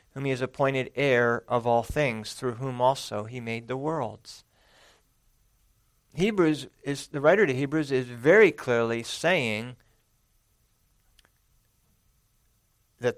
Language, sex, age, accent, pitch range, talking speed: English, male, 50-69, American, 115-140 Hz, 120 wpm